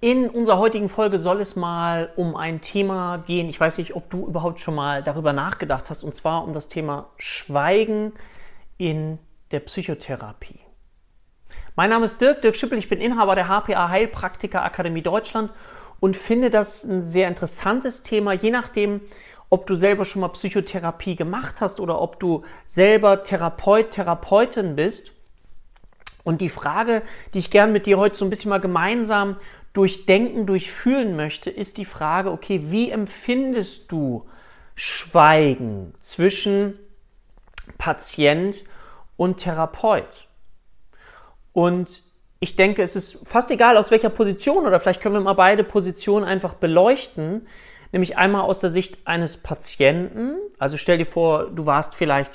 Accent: German